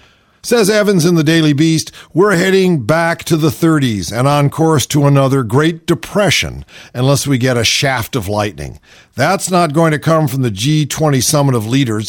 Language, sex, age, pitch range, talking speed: English, male, 50-69, 120-165 Hz, 185 wpm